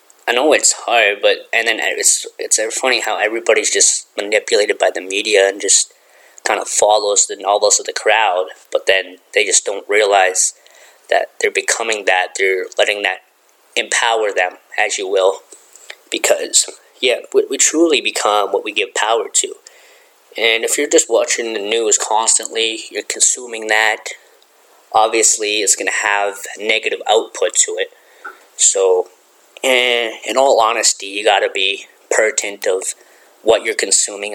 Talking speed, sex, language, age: 155 wpm, male, English, 20-39